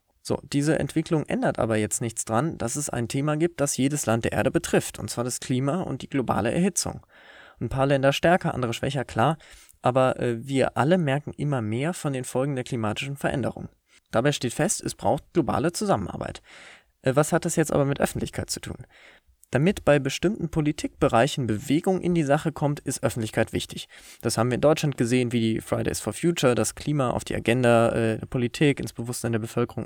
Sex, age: male, 20-39